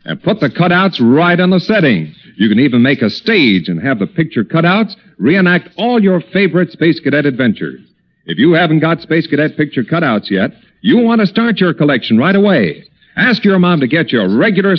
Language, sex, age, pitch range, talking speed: English, male, 50-69, 150-195 Hz, 205 wpm